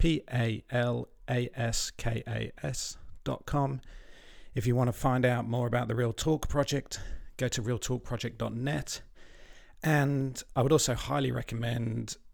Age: 40-59